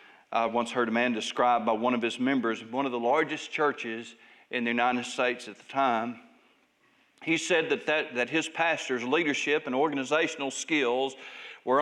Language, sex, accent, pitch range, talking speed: English, male, American, 120-150 Hz, 180 wpm